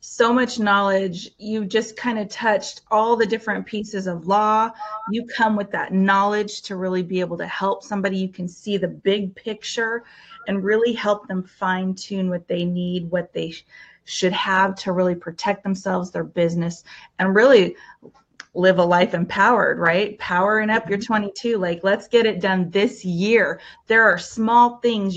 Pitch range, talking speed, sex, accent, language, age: 185-225 Hz, 175 wpm, female, American, English, 30-49